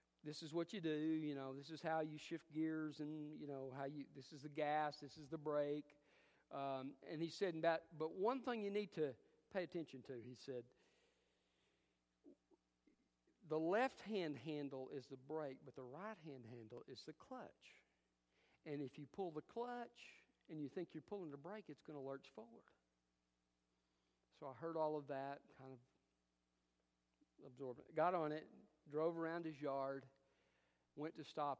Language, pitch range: English, 110-160 Hz